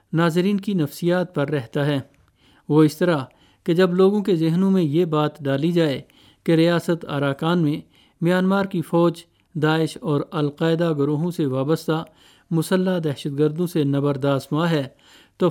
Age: 50-69